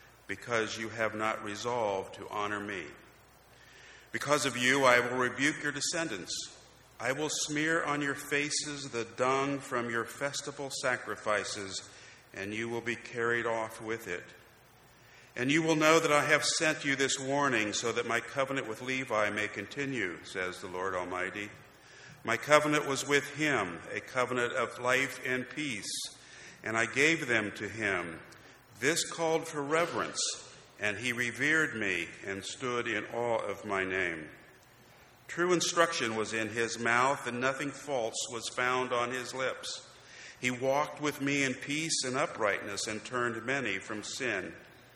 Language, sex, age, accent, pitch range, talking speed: English, male, 50-69, American, 110-145 Hz, 160 wpm